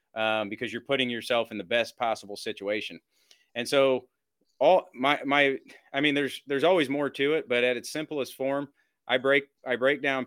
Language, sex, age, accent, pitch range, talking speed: English, male, 30-49, American, 110-135 Hz, 195 wpm